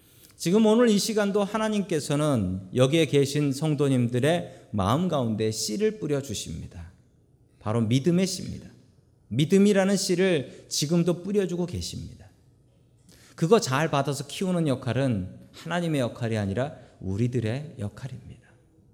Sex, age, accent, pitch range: male, 40-59, native, 120-185 Hz